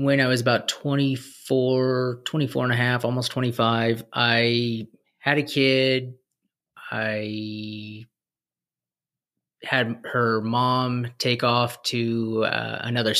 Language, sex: English, male